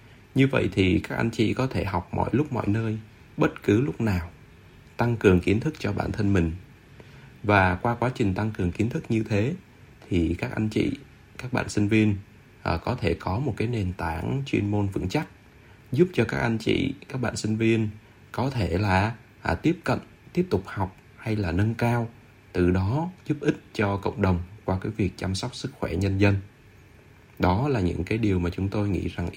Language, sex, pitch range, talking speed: Vietnamese, male, 100-120 Hz, 205 wpm